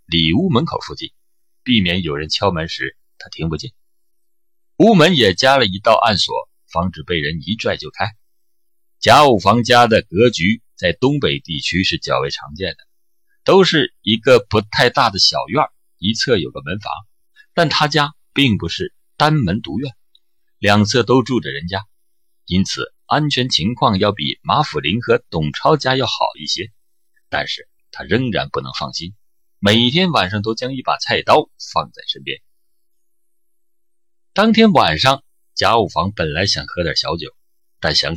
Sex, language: male, Chinese